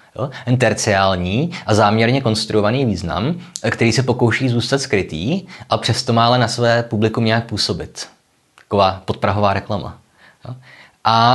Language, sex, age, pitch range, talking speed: Czech, male, 20-39, 100-120 Hz, 120 wpm